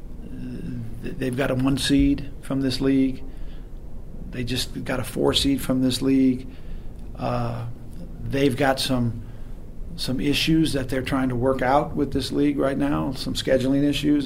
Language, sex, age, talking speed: English, male, 40-59, 155 wpm